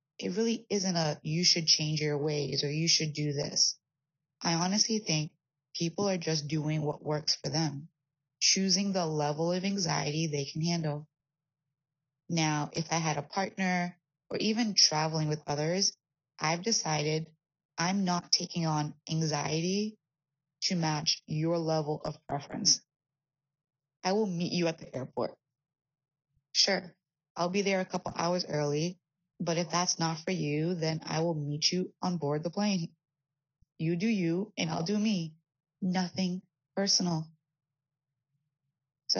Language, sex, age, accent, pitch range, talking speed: English, female, 20-39, American, 145-175 Hz, 150 wpm